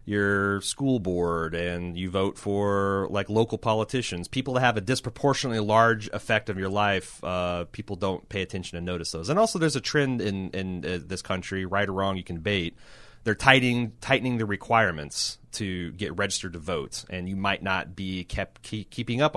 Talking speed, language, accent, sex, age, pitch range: 195 wpm, English, American, male, 30-49, 95-115 Hz